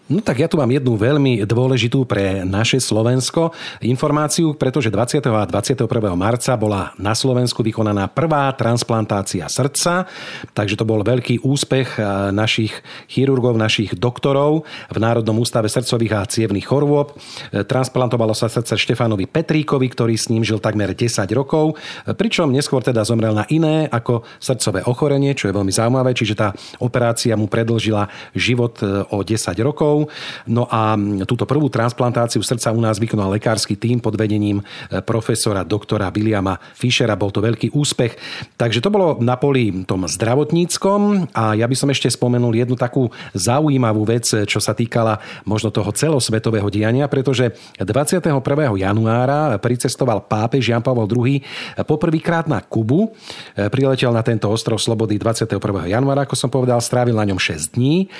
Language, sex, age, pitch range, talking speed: Slovak, male, 40-59, 110-135 Hz, 150 wpm